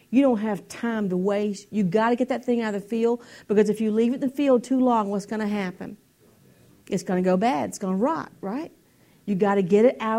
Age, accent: 50-69, American